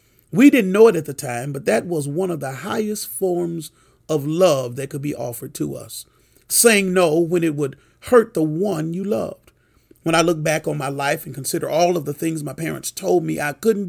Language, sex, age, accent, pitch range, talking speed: English, male, 40-59, American, 145-225 Hz, 225 wpm